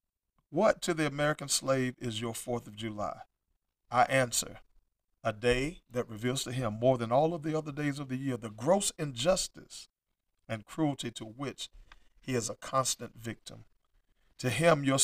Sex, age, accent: male, 40-59, American